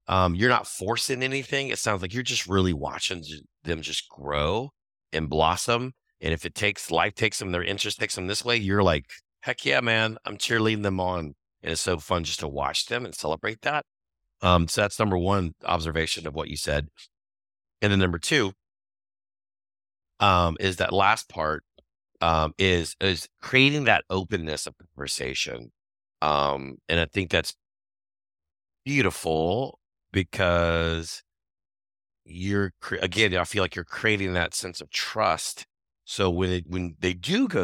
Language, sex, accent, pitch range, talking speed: English, male, American, 80-105 Hz, 165 wpm